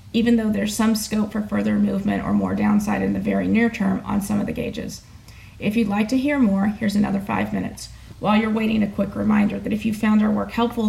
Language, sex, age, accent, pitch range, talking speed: English, female, 30-49, American, 200-225 Hz, 240 wpm